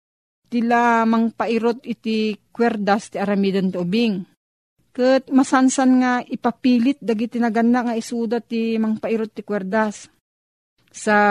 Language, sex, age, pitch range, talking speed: Filipino, female, 40-59, 180-230 Hz, 110 wpm